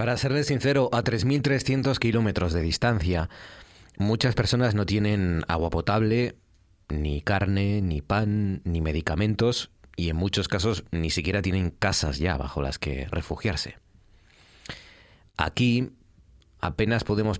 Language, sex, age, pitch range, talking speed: Spanish, male, 30-49, 85-105 Hz, 125 wpm